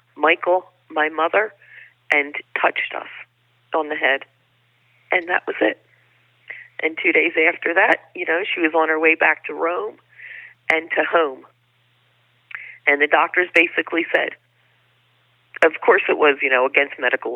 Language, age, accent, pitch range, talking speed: English, 40-59, American, 135-165 Hz, 150 wpm